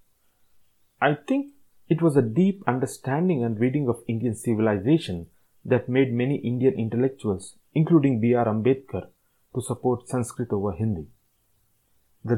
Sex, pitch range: male, 110-140 Hz